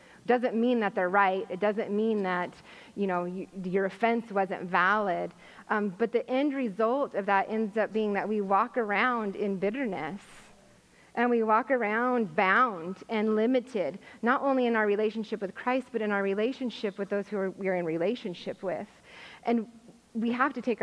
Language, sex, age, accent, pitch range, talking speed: English, female, 30-49, American, 200-235 Hz, 180 wpm